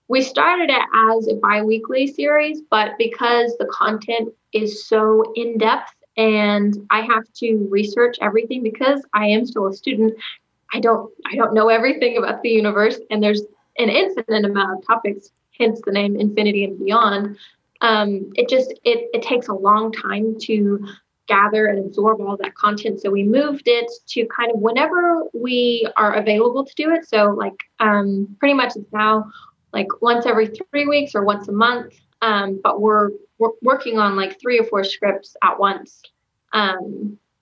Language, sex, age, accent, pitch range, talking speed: English, female, 10-29, American, 205-240 Hz, 170 wpm